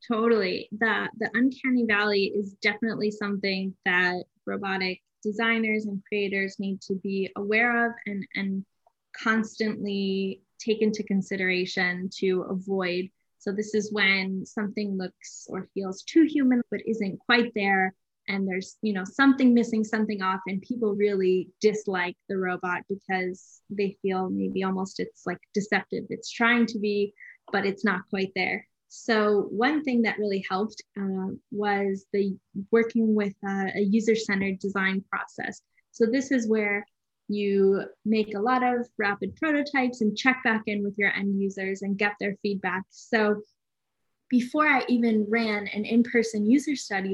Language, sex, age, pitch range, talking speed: English, female, 10-29, 195-230 Hz, 150 wpm